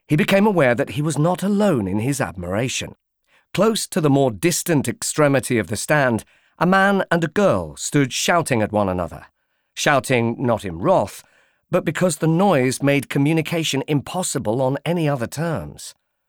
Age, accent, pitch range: 50-69, British, 120-180 Hz